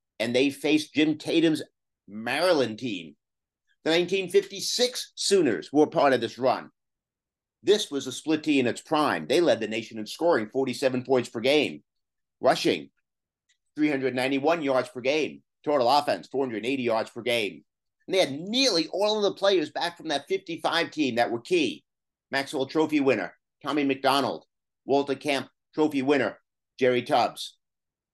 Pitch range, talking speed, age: 130-170 Hz, 150 wpm, 50-69